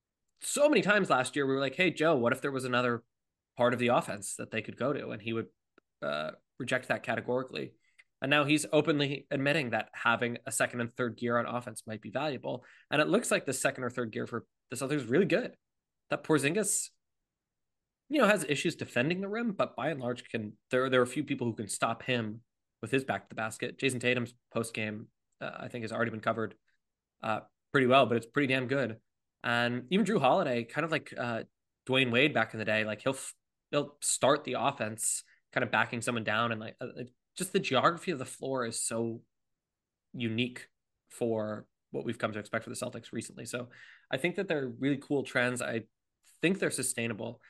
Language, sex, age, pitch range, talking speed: English, male, 20-39, 115-140 Hz, 215 wpm